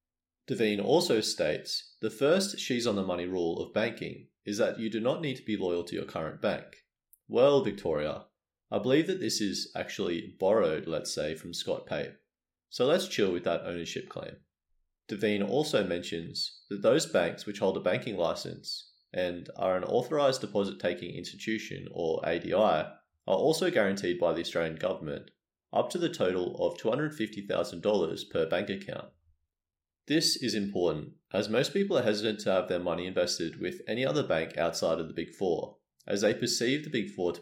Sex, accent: male, Australian